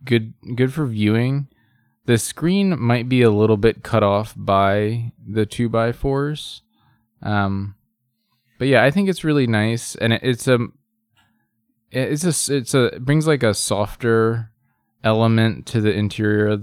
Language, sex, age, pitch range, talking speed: English, male, 20-39, 100-120 Hz, 155 wpm